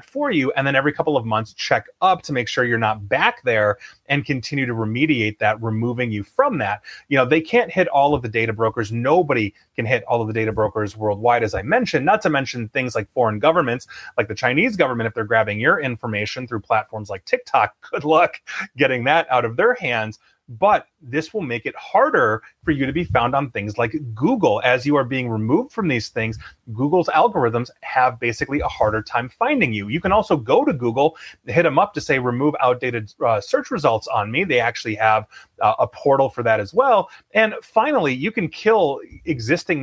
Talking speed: 215 wpm